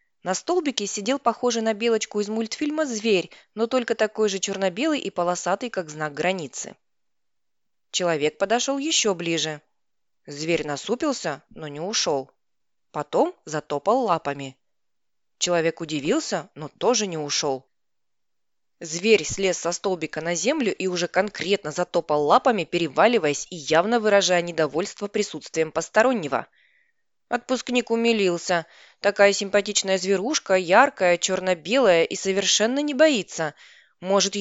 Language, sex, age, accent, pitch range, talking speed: Russian, female, 20-39, native, 175-230 Hz, 115 wpm